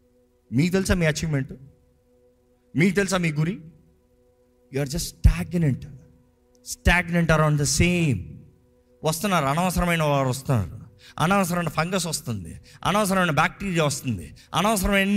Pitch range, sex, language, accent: 125-185 Hz, male, Telugu, native